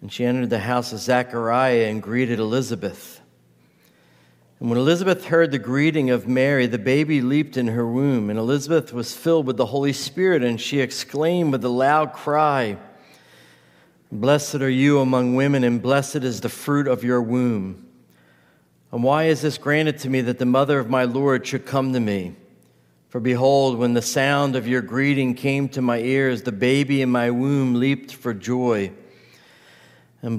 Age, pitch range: 50-69, 105-135 Hz